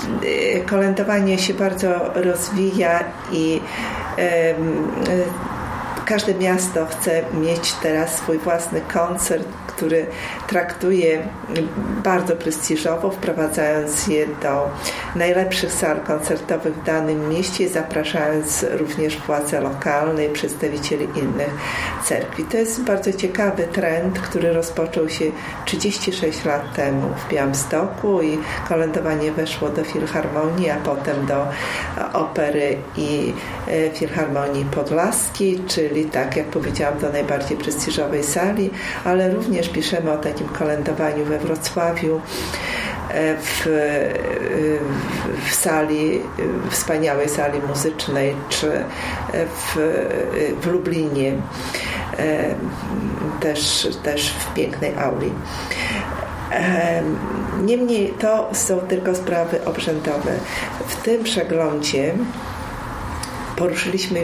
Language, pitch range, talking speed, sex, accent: Polish, 150-180 Hz, 95 wpm, female, native